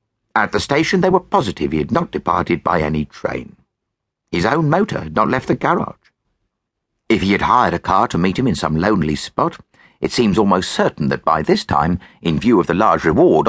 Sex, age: male, 50-69